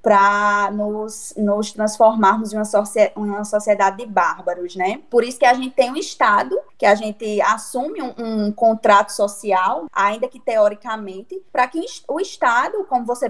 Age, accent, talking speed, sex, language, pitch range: 20-39, Brazilian, 165 wpm, female, Portuguese, 215-315 Hz